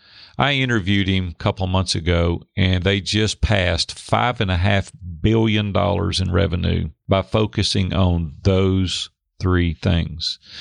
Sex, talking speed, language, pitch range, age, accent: male, 145 wpm, English, 95-115 Hz, 50-69, American